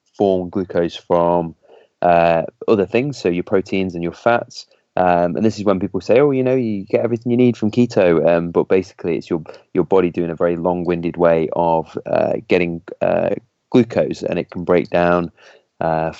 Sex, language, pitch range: male, English, 85-100 Hz